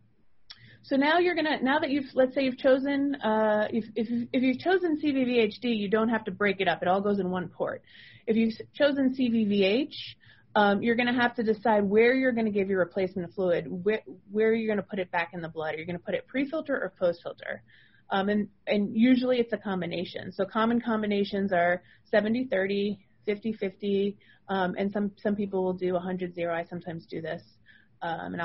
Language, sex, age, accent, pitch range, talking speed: English, female, 30-49, American, 185-240 Hz, 210 wpm